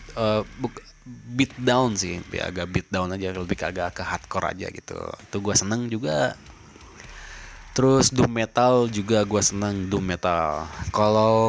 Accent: native